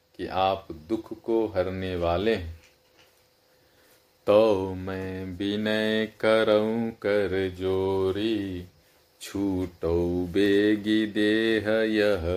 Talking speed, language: 80 wpm, Hindi